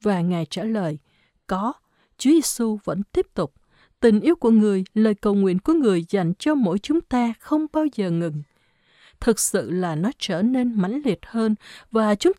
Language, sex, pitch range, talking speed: Vietnamese, female, 190-270 Hz, 190 wpm